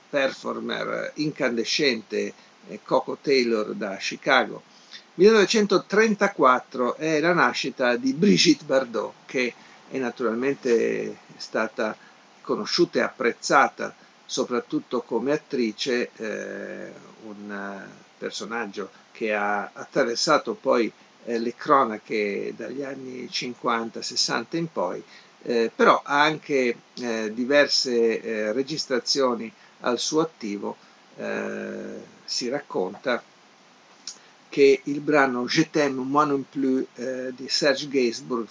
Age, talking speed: 50-69, 100 wpm